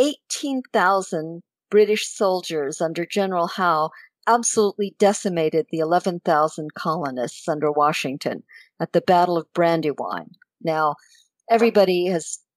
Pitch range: 170-230 Hz